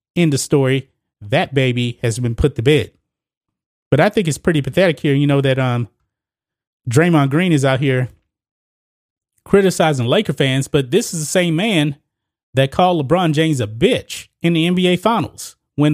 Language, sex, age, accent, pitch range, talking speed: English, male, 30-49, American, 125-160 Hz, 175 wpm